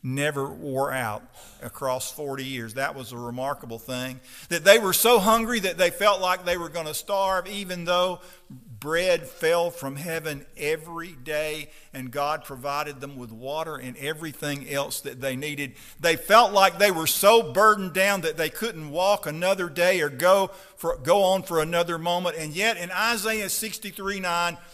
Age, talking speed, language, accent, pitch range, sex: 50-69, 175 wpm, English, American, 135-195 Hz, male